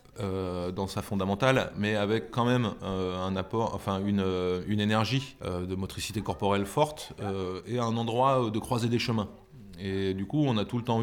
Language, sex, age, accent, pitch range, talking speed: French, male, 20-39, French, 95-115 Hz, 200 wpm